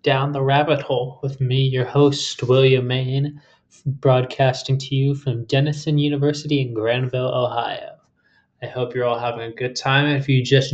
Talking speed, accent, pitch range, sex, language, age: 170 wpm, American, 125-140 Hz, male, English, 20-39